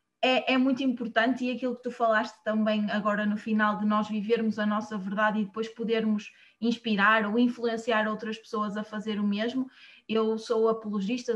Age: 20-39